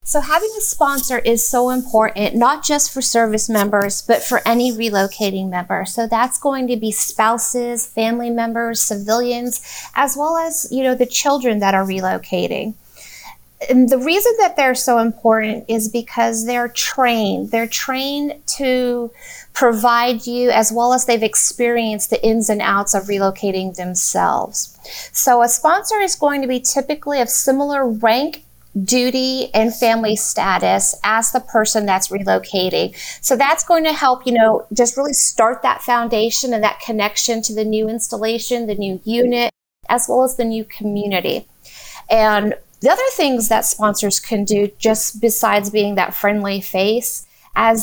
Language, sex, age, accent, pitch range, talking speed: English, female, 30-49, American, 210-255 Hz, 160 wpm